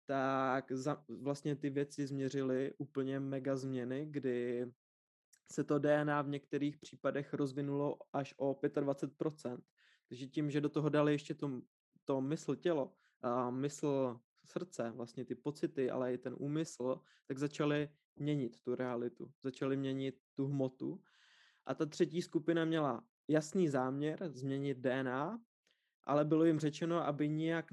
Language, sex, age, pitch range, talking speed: Czech, male, 20-39, 130-150 Hz, 140 wpm